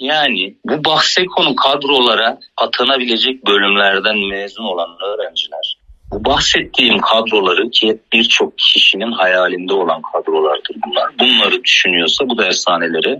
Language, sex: Turkish, male